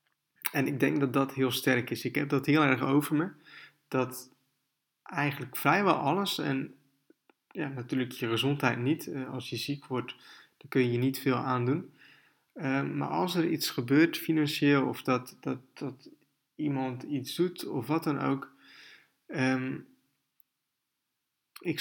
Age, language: 20-39, Dutch